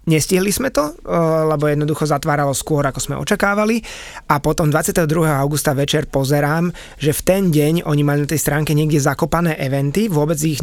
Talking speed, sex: 170 wpm, male